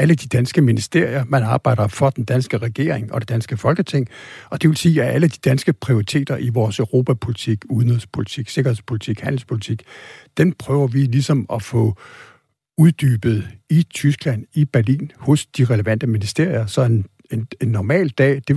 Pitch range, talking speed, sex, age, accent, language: 115-140 Hz, 160 wpm, male, 60-79, native, Danish